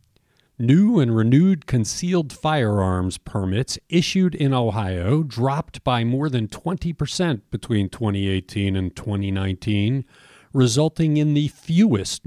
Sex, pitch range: male, 110-150 Hz